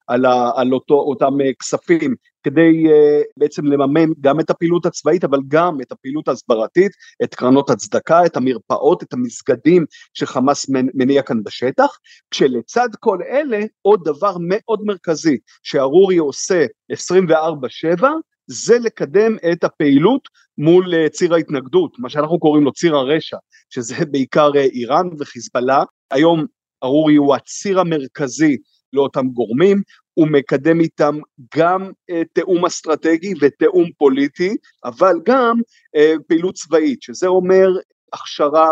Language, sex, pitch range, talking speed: Hebrew, male, 140-195 Hz, 125 wpm